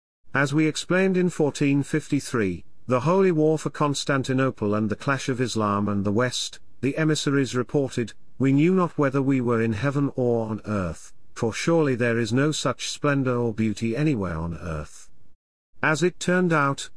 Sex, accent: male, British